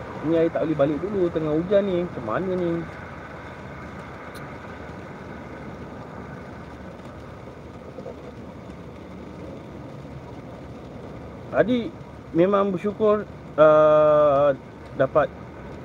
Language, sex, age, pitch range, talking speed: Malay, male, 30-49, 130-170 Hz, 60 wpm